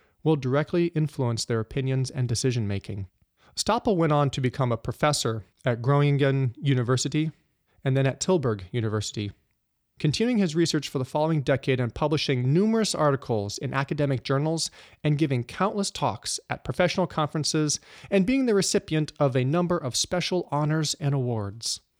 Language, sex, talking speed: English, male, 150 wpm